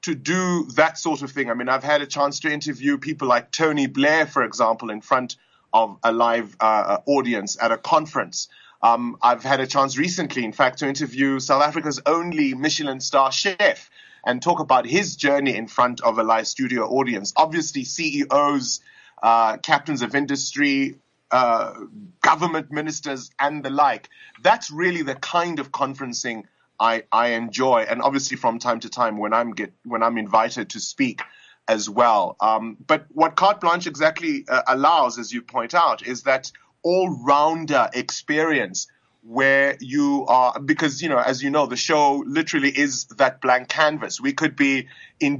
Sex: male